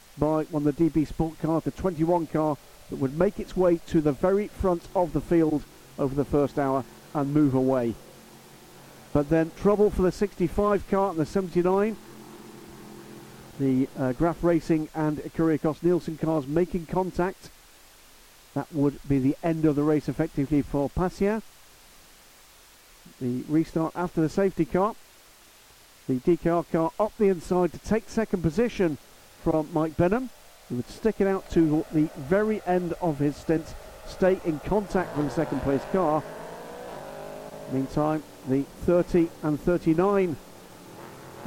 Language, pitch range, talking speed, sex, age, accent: English, 145-185 Hz, 150 wpm, male, 50-69, British